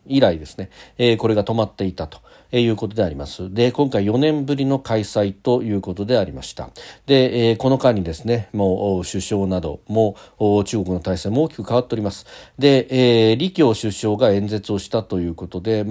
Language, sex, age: Japanese, male, 40-59